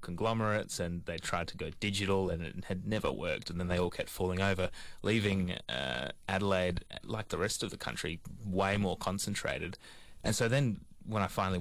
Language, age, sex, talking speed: English, 20-39, male, 190 wpm